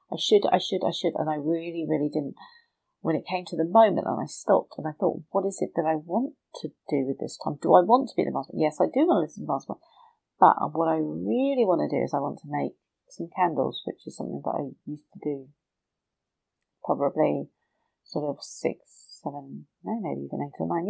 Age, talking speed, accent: 40-59, 240 wpm, British